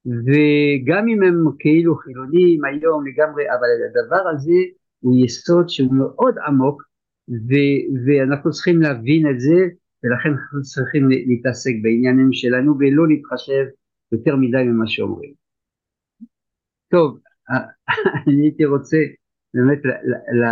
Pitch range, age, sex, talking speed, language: 125-160 Hz, 50-69, male, 110 wpm, Hebrew